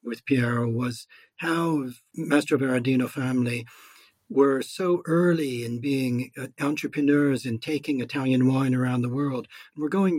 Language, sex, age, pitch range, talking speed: English, male, 60-79, 115-135 Hz, 130 wpm